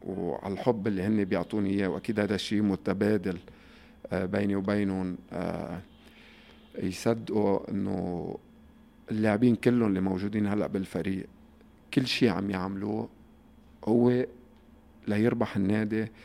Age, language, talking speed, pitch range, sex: 50-69, Arabic, 95 wpm, 100-115 Hz, male